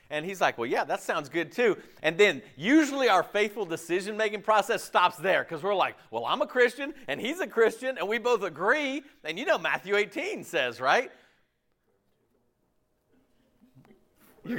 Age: 50-69